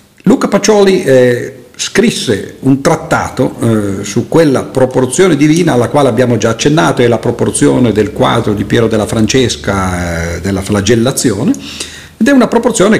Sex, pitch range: male, 100-130 Hz